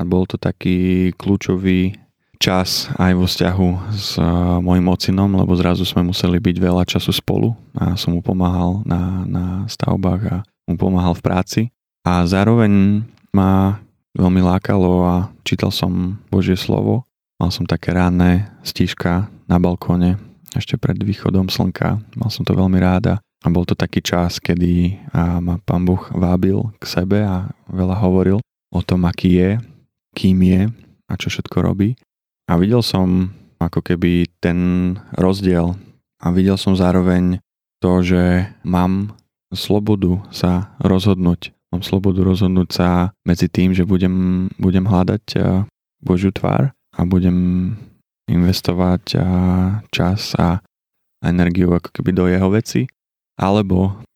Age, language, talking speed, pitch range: 20-39, Slovak, 135 wpm, 90-100 Hz